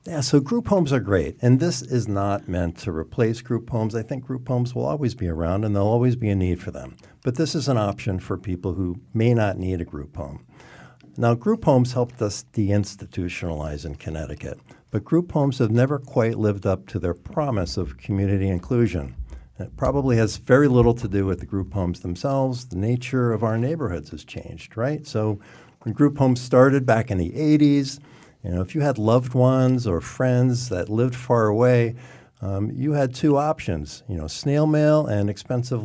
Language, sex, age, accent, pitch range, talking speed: English, male, 50-69, American, 95-130 Hz, 205 wpm